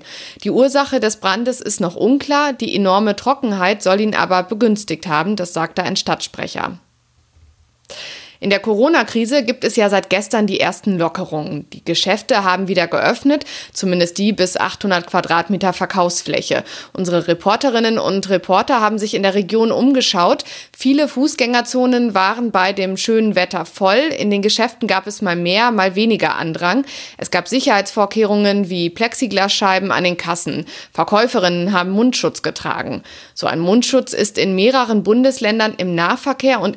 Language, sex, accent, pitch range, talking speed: German, female, German, 180-240 Hz, 150 wpm